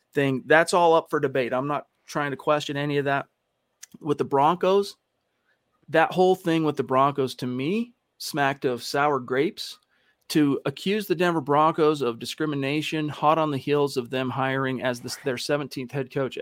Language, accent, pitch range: English, American, 130-155 Hz